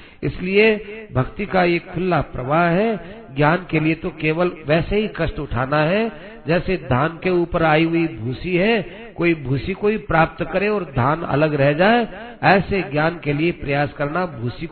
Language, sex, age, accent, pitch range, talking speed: Hindi, male, 50-69, native, 140-185 Hz, 170 wpm